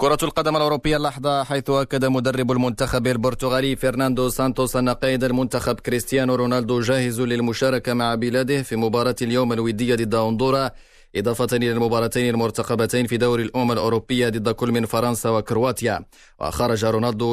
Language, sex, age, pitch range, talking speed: Arabic, male, 20-39, 115-130 Hz, 140 wpm